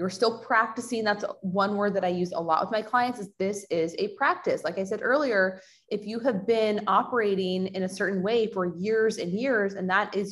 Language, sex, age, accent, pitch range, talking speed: English, female, 20-39, American, 180-225 Hz, 225 wpm